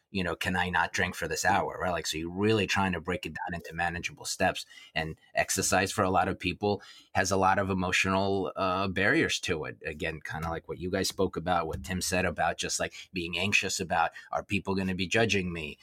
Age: 30-49